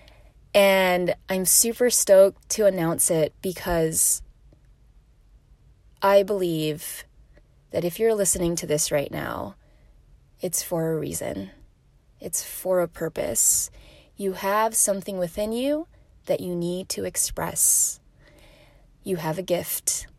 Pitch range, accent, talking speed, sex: 175-230 Hz, American, 120 wpm, female